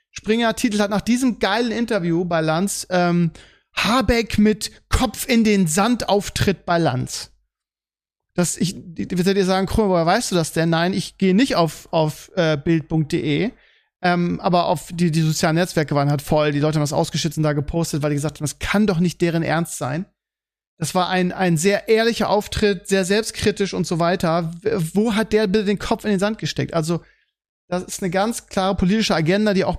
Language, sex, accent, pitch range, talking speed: German, male, German, 165-215 Hz, 200 wpm